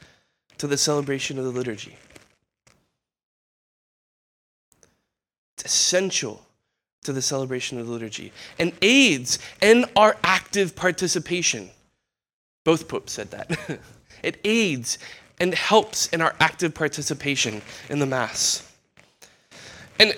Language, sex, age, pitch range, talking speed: English, male, 20-39, 145-210 Hz, 105 wpm